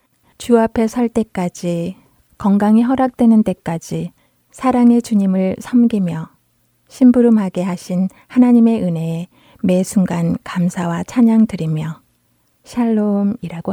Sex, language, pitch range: female, Korean, 180-230 Hz